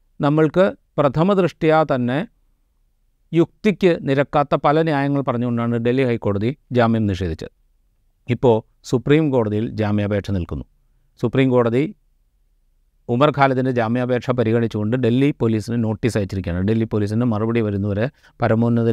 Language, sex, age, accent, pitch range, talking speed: Malayalam, male, 40-59, native, 110-135 Hz, 100 wpm